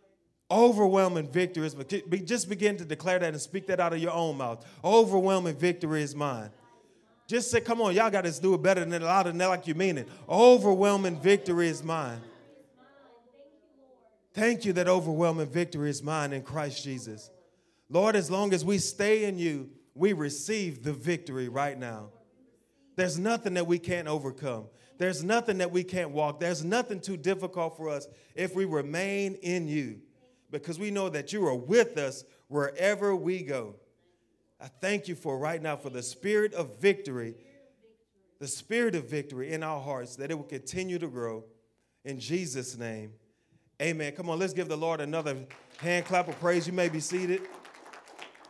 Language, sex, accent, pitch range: English, male, American, 140-190 Hz